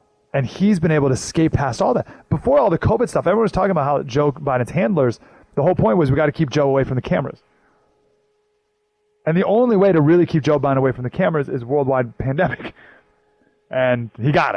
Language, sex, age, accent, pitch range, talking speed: English, male, 30-49, American, 125-170 Hz, 225 wpm